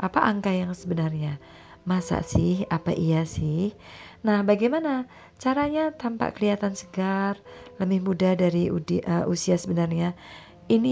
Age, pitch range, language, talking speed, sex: 30-49, 165-210 Hz, Indonesian, 125 wpm, female